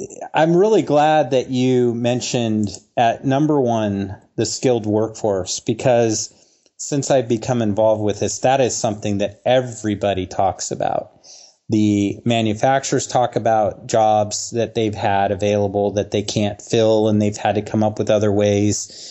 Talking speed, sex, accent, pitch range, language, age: 150 wpm, male, American, 105-120 Hz, English, 30-49